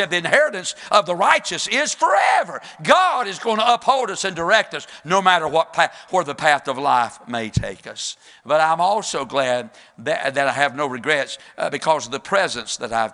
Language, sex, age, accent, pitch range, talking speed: English, male, 50-69, American, 155-195 Hz, 205 wpm